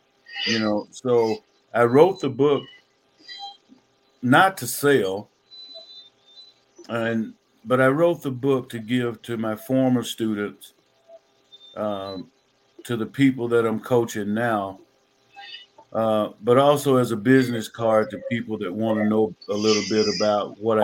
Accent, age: American, 50-69